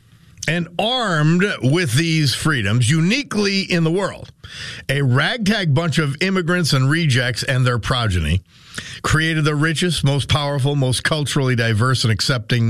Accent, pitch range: American, 110-155 Hz